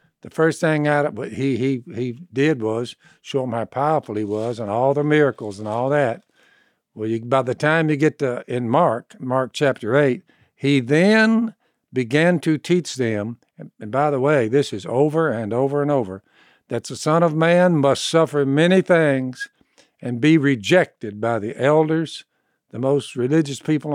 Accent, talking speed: American, 185 wpm